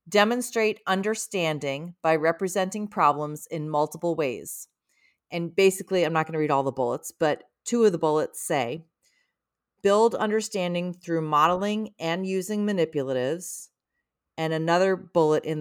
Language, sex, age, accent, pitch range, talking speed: English, female, 40-59, American, 155-190 Hz, 135 wpm